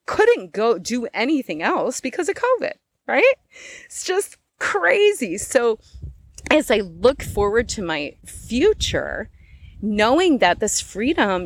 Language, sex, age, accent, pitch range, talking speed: English, female, 30-49, American, 170-250 Hz, 125 wpm